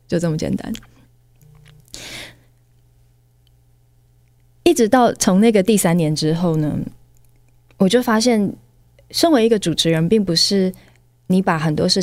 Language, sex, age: Chinese, female, 20-39